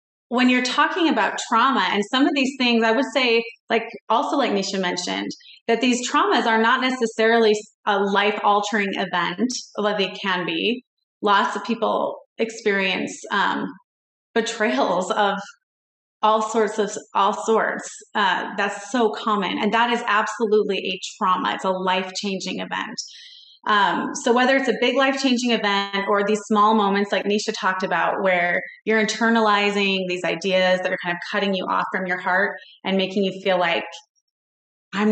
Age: 30-49